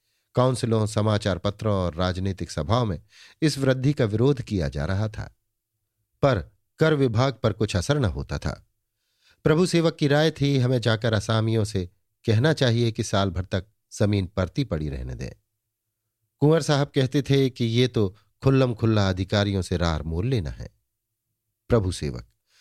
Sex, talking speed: male, 160 wpm